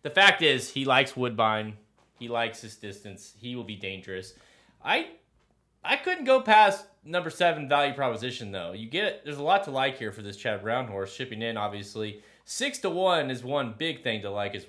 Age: 30-49